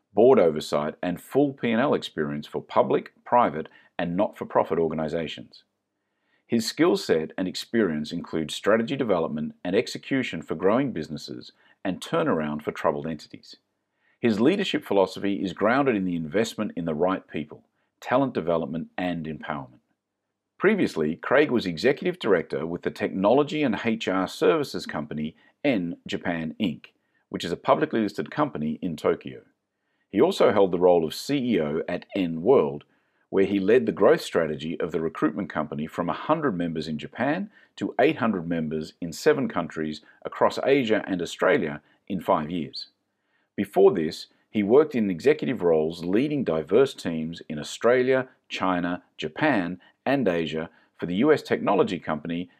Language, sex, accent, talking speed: English, male, Australian, 145 wpm